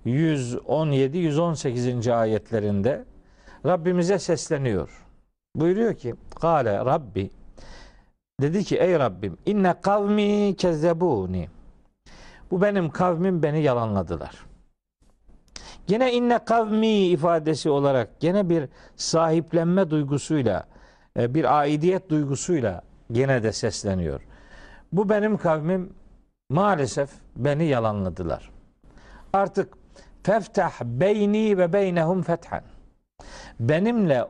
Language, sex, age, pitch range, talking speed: Turkish, male, 50-69, 125-190 Hz, 85 wpm